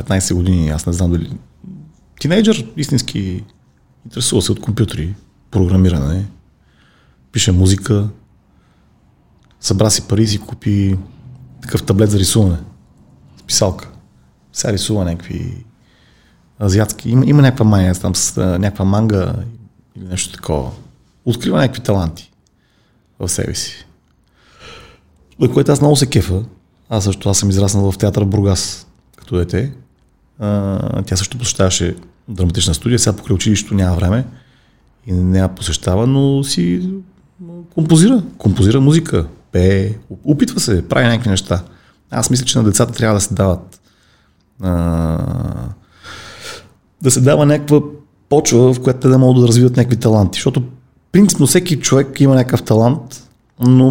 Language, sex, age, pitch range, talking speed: Bulgarian, male, 30-49, 95-125 Hz, 130 wpm